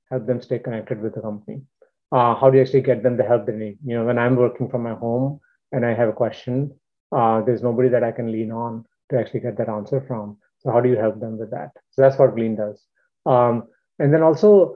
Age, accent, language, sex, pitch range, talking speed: 30-49, Indian, English, male, 120-140 Hz, 250 wpm